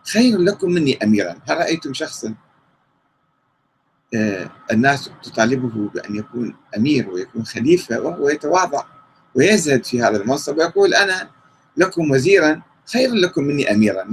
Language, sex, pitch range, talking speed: Arabic, male, 120-195 Hz, 125 wpm